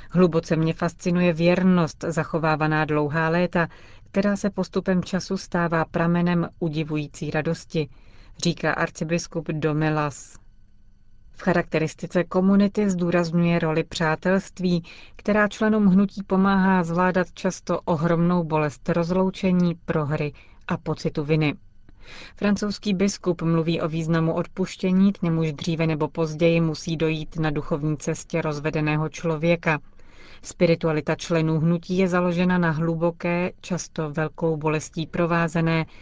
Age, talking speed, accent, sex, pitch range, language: 30-49, 110 wpm, native, female, 155-180 Hz, Czech